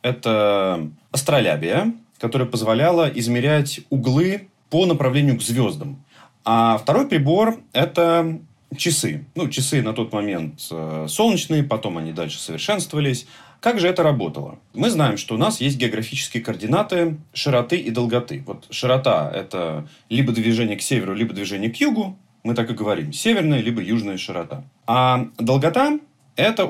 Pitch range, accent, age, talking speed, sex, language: 115-160 Hz, native, 30-49, 140 wpm, male, Russian